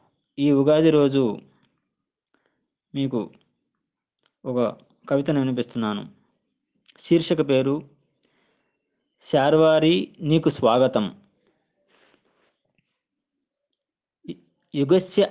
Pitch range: 125-155 Hz